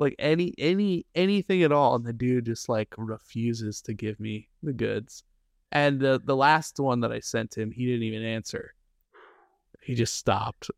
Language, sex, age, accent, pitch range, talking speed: English, male, 20-39, American, 110-140 Hz, 185 wpm